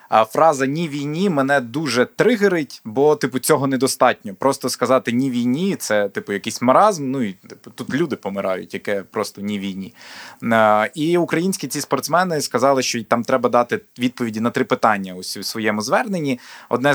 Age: 20-39